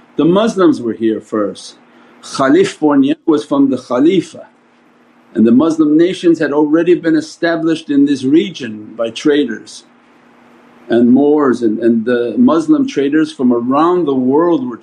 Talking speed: 145 wpm